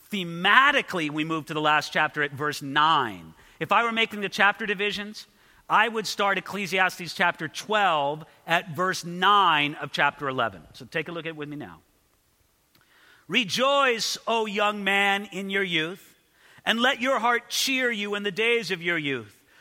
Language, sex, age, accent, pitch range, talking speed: English, male, 50-69, American, 170-250 Hz, 175 wpm